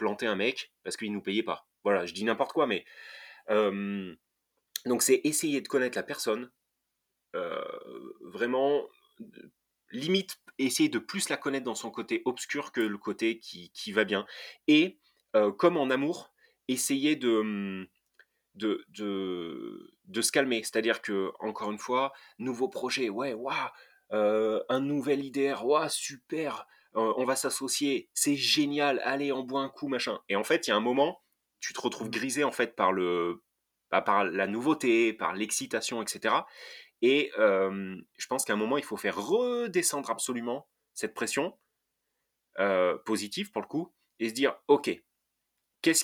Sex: male